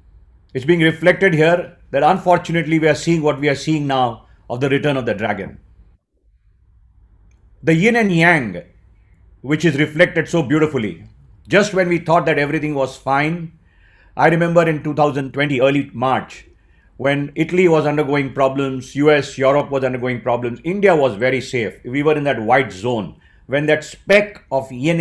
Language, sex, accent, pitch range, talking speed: English, male, Indian, 125-165 Hz, 165 wpm